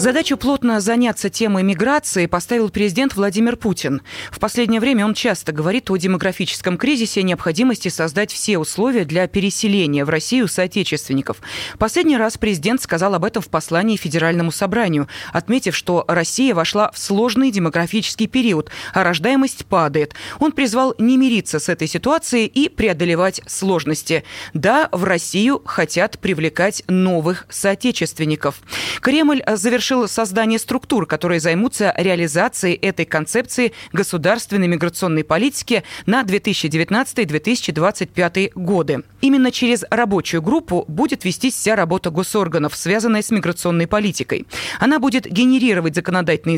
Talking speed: 125 wpm